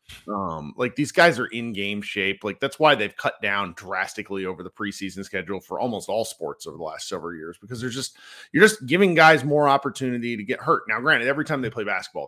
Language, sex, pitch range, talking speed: English, male, 105-145 Hz, 230 wpm